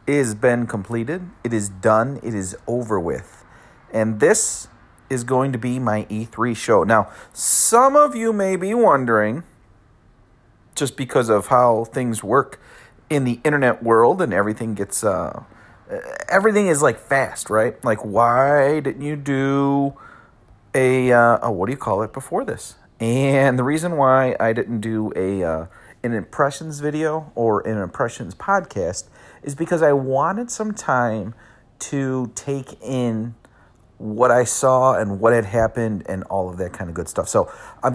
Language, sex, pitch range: English, male, 110-140 Hz